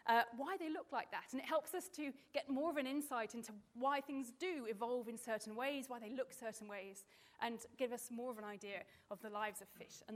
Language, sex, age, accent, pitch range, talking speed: English, female, 30-49, British, 225-285 Hz, 250 wpm